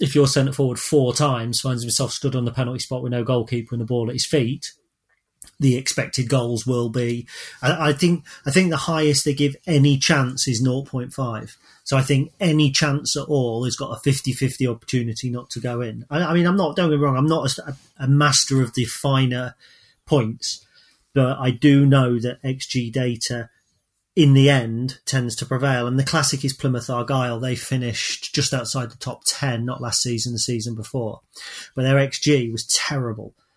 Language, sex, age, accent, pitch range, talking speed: English, male, 40-59, British, 120-140 Hz, 195 wpm